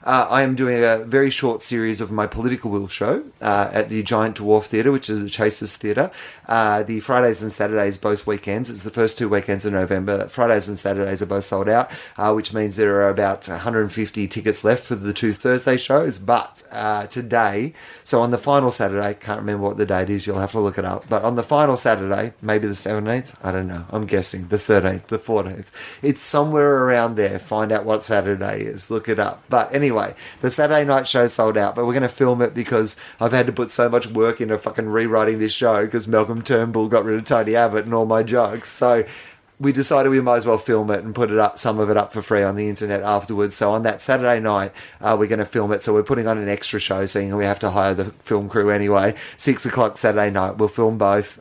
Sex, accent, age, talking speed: male, Australian, 30-49, 240 wpm